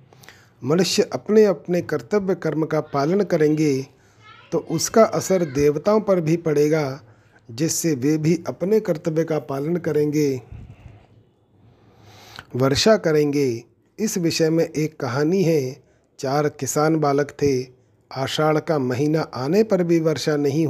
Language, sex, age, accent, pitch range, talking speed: Hindi, male, 40-59, native, 135-165 Hz, 125 wpm